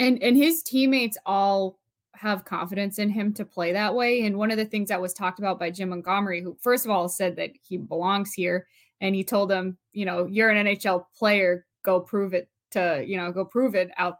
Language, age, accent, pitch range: English, 20-39, American, 190-230 Hz